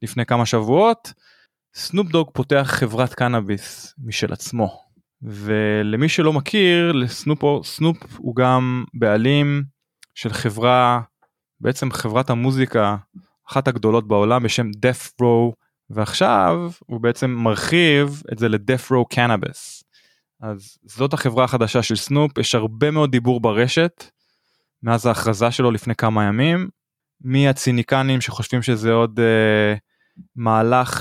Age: 20-39